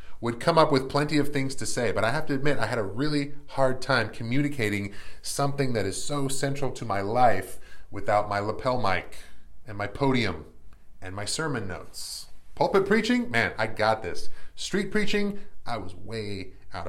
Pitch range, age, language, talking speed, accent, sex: 95-130 Hz, 30-49, English, 185 wpm, American, male